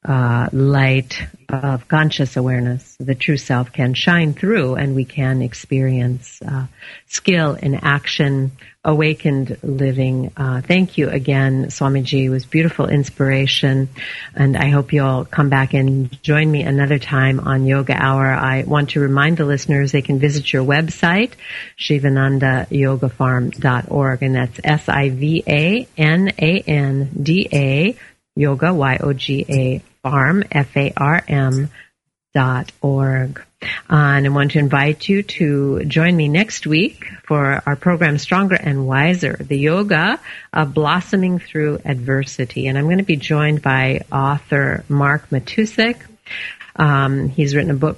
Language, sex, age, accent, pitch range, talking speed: English, female, 50-69, American, 135-155 Hz, 135 wpm